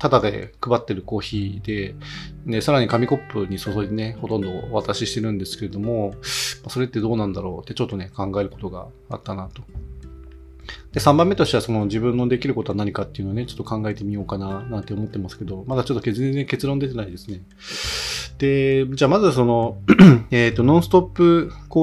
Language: Japanese